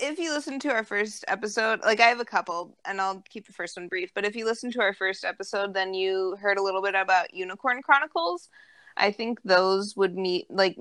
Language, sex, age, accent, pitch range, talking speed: English, female, 20-39, American, 185-220 Hz, 235 wpm